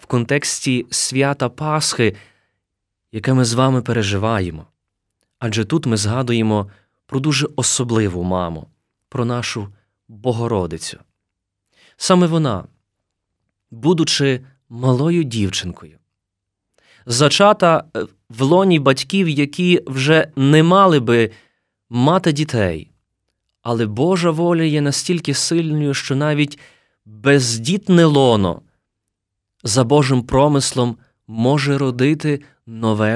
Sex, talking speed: male, 95 wpm